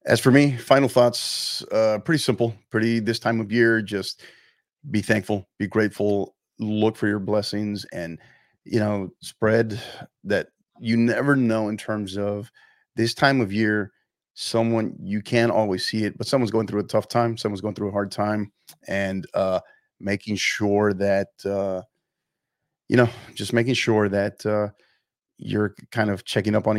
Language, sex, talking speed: English, male, 170 wpm